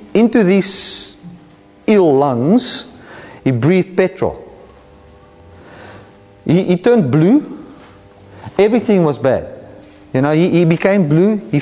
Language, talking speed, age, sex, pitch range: English, 110 wpm, 40-59, male, 145-230 Hz